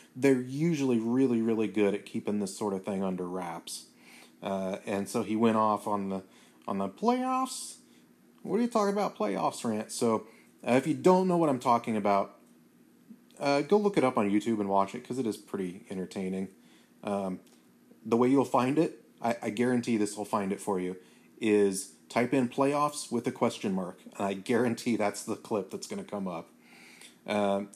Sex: male